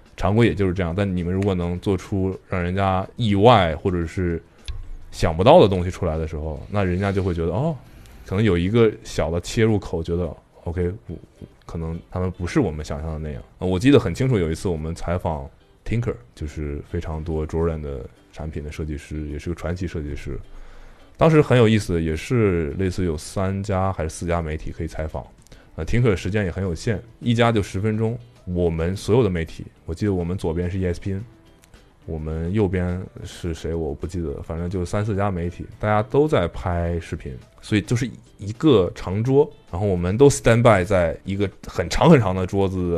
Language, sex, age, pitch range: Chinese, male, 20-39, 80-105 Hz